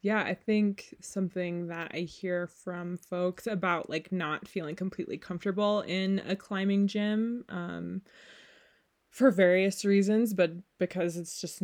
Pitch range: 175-220 Hz